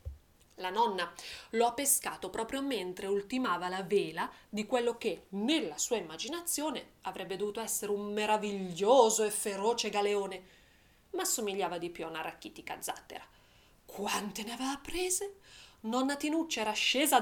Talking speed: 140 wpm